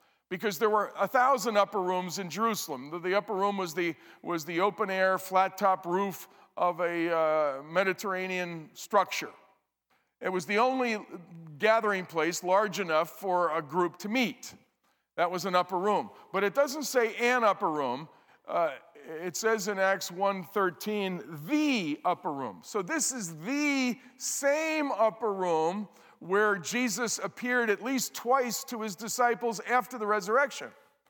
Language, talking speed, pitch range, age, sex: English, 150 wpm, 185-245 Hz, 50-69, male